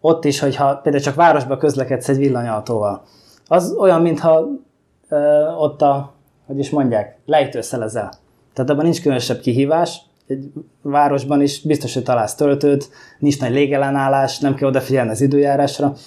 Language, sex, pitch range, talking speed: Hungarian, male, 130-150 Hz, 145 wpm